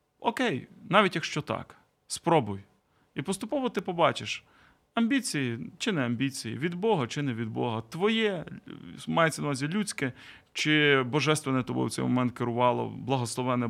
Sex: male